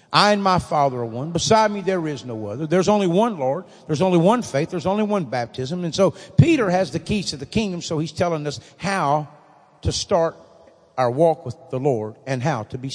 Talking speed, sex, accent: 225 wpm, male, American